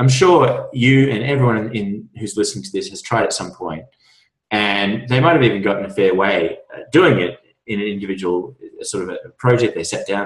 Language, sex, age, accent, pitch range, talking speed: English, male, 20-39, Australian, 105-130 Hz, 220 wpm